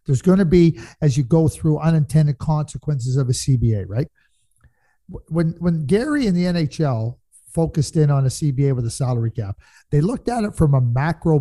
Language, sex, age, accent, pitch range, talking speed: English, male, 50-69, American, 140-190 Hz, 190 wpm